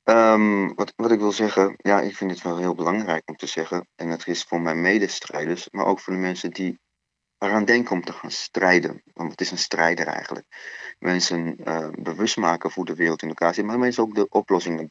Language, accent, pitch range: Dutch, Dutch, 85-100 Hz